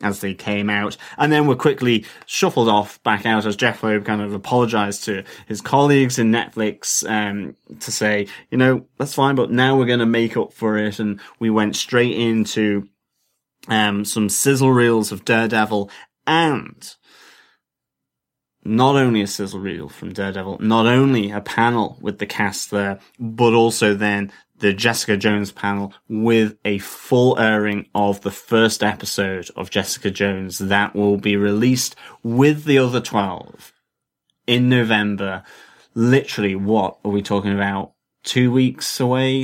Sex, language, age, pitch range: male, English, 30-49, 100-120 Hz